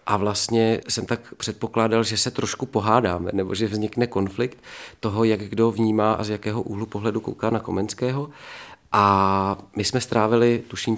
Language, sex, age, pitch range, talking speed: Czech, male, 40-59, 100-115 Hz, 165 wpm